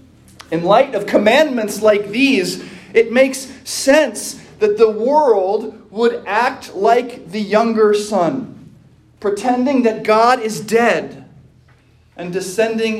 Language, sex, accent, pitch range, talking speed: English, male, American, 155-220 Hz, 115 wpm